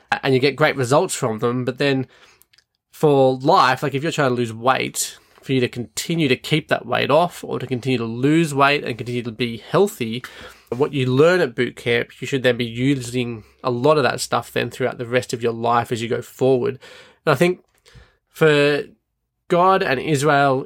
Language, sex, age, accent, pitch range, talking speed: English, male, 20-39, Australian, 125-145 Hz, 210 wpm